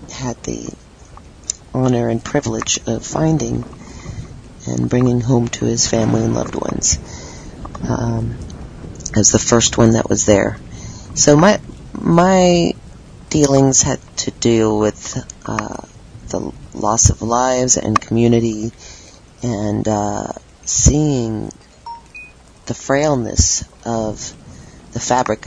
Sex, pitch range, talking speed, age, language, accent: female, 110-130 Hz, 110 wpm, 40-59, English, American